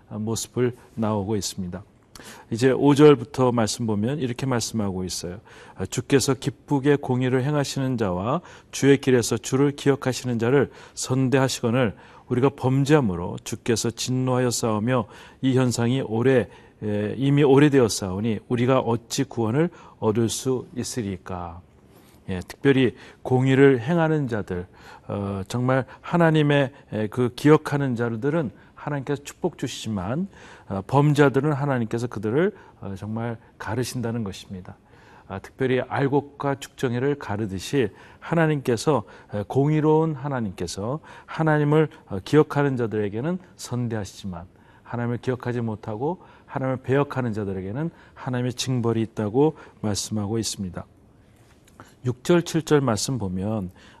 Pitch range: 105-140 Hz